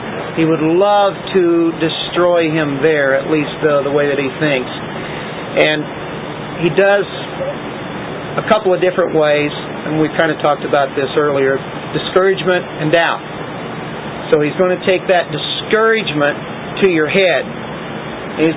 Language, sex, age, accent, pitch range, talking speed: English, male, 40-59, American, 150-185 Hz, 145 wpm